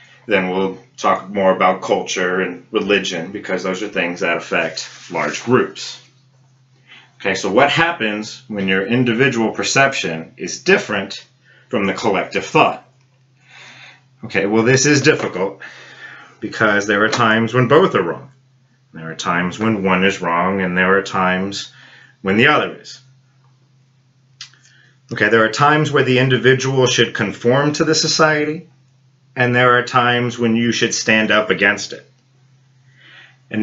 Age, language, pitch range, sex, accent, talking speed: 30-49, English, 105-130 Hz, male, American, 145 wpm